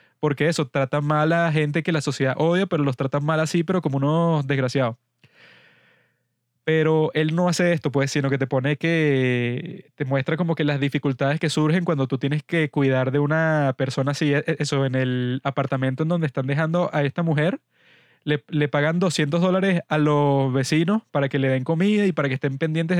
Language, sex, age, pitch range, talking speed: Spanish, male, 20-39, 140-165 Hz, 200 wpm